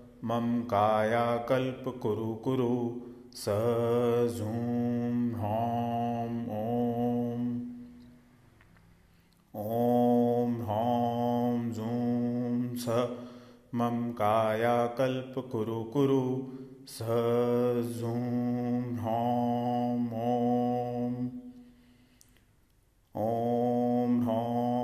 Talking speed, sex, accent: 40 wpm, male, native